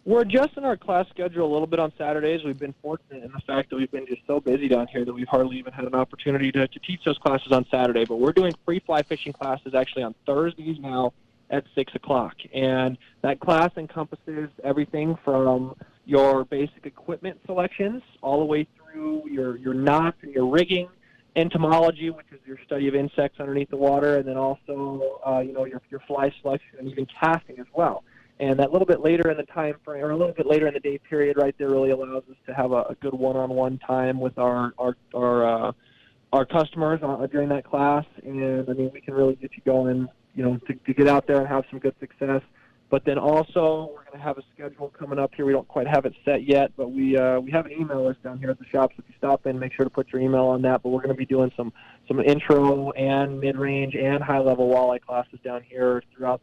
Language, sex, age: English, male, 20-39